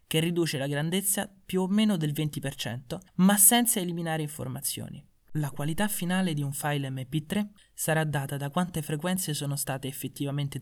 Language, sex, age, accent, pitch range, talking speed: Italian, male, 20-39, native, 130-165 Hz, 160 wpm